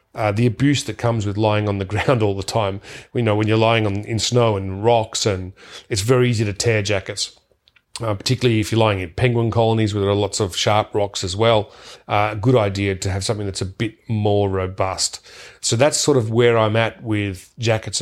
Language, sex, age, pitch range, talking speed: English, male, 40-59, 100-115 Hz, 225 wpm